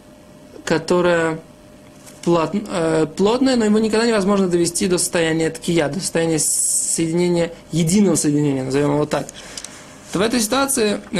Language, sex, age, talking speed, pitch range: Russian, male, 20-39, 120 wpm, 175-215 Hz